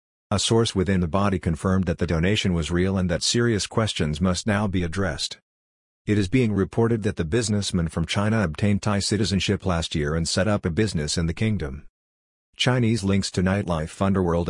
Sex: male